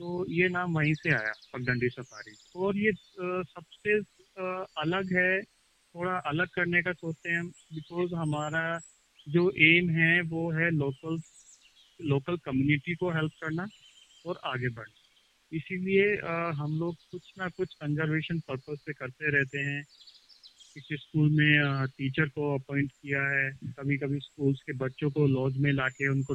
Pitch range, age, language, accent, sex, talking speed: 140-180 Hz, 30-49, Hindi, native, male, 150 wpm